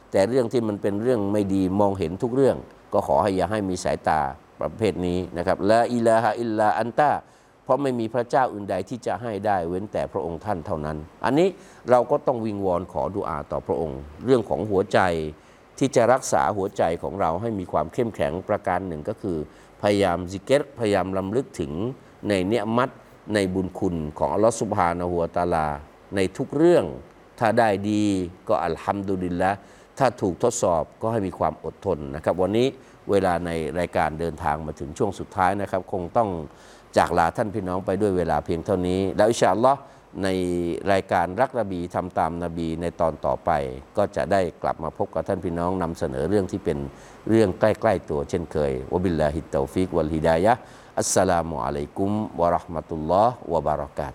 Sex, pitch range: male, 85-110 Hz